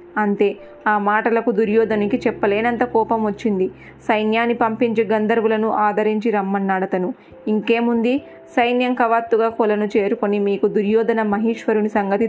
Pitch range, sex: 205-240 Hz, female